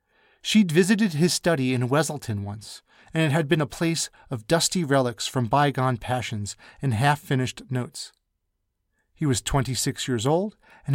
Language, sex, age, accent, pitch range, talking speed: English, male, 30-49, American, 120-165 Hz, 155 wpm